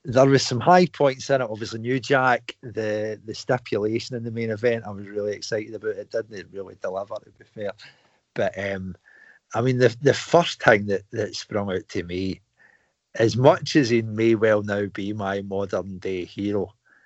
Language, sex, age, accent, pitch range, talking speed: English, male, 50-69, British, 100-130 Hz, 195 wpm